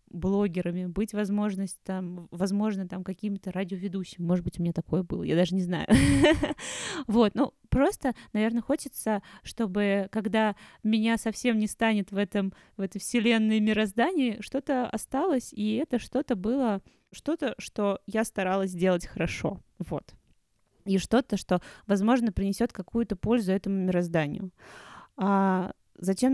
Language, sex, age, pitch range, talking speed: Russian, female, 20-39, 190-230 Hz, 135 wpm